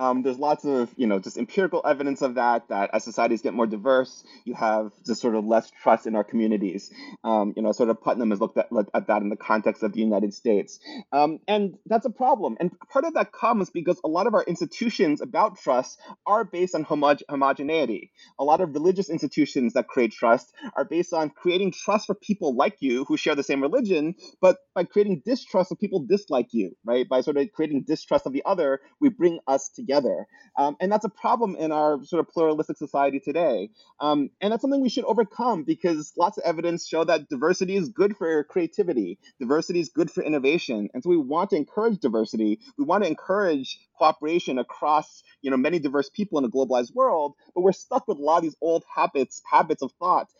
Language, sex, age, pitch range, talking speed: English, male, 30-49, 130-195 Hz, 215 wpm